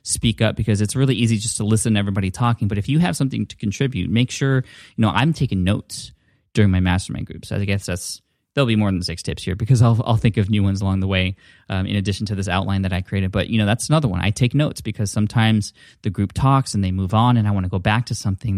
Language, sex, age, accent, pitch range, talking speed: English, male, 20-39, American, 100-120 Hz, 275 wpm